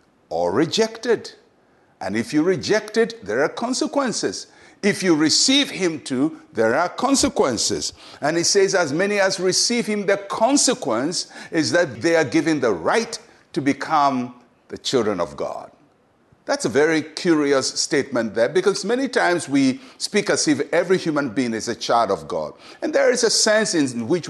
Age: 60-79